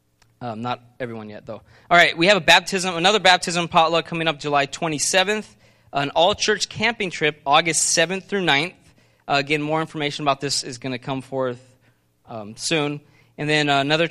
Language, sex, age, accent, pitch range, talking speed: English, male, 20-39, American, 130-170 Hz, 185 wpm